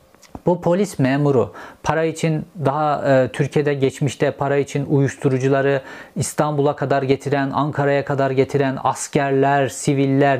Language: Turkish